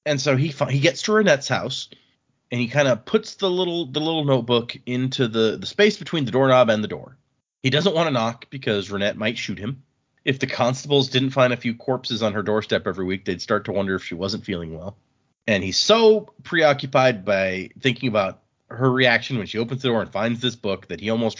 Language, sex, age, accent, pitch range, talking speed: English, male, 30-49, American, 110-145 Hz, 225 wpm